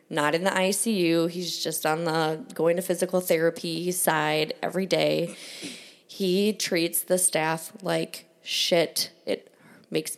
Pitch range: 180-235 Hz